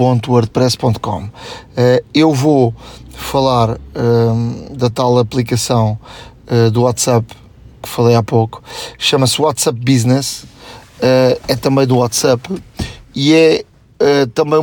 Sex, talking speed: male, 115 wpm